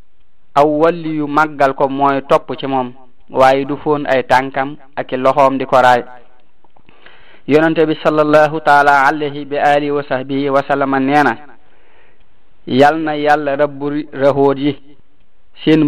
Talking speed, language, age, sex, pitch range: 120 wpm, French, 30-49, male, 135-150 Hz